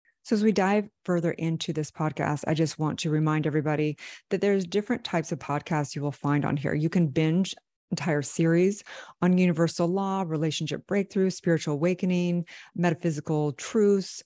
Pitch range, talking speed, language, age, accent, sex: 150-175 Hz, 165 wpm, English, 30-49, American, female